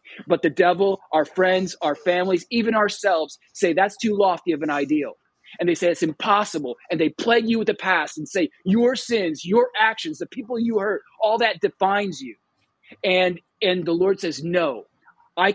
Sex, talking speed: male, 190 wpm